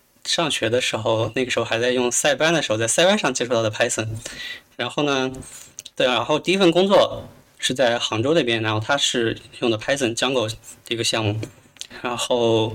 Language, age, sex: Chinese, 20-39, male